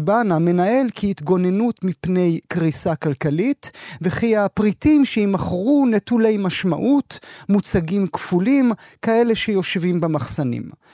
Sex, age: male, 30-49